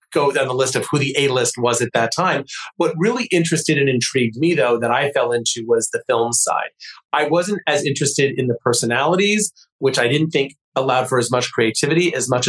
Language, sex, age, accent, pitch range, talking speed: English, male, 40-59, American, 120-155 Hz, 215 wpm